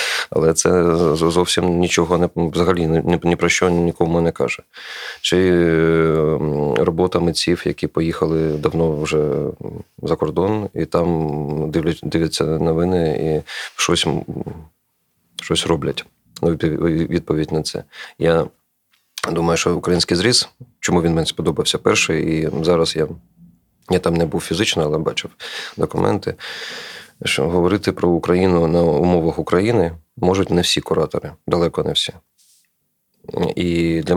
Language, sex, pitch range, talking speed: Ukrainian, male, 80-90 Hz, 120 wpm